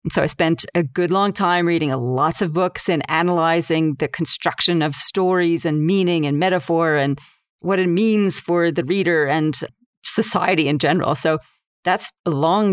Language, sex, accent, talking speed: English, female, American, 170 wpm